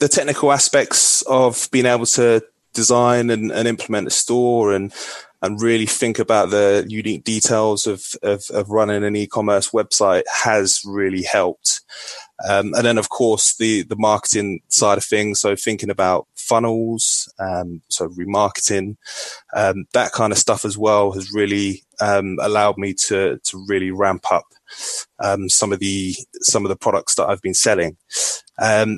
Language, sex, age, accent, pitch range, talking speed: English, male, 20-39, British, 100-110 Hz, 165 wpm